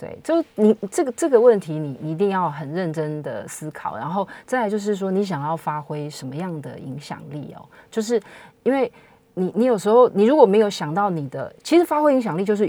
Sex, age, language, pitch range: female, 30-49, Chinese, 160-230 Hz